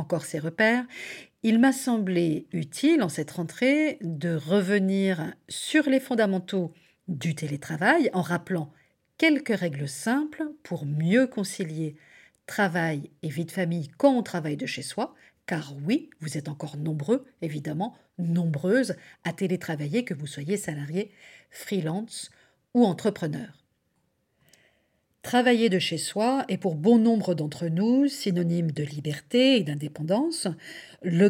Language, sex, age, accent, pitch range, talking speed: French, female, 50-69, French, 165-245 Hz, 130 wpm